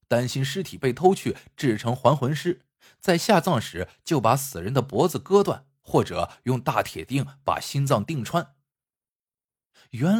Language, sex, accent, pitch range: Chinese, male, native, 115-175 Hz